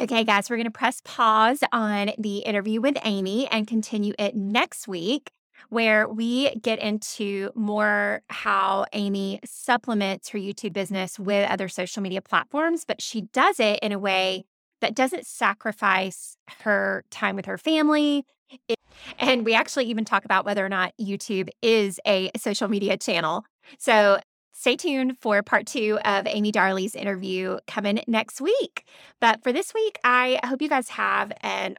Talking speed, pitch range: 160 wpm, 195-245 Hz